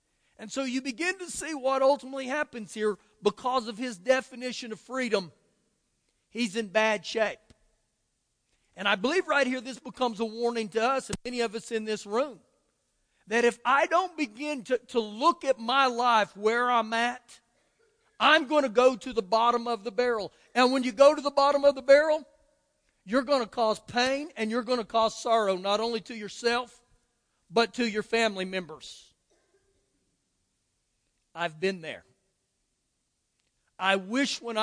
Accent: American